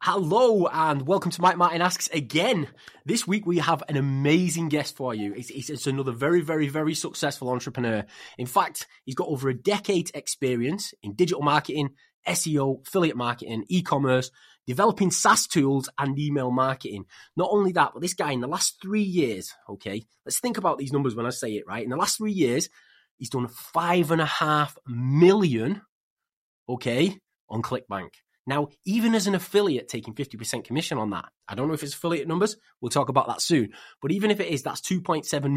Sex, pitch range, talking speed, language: male, 125-170 Hz, 185 wpm, English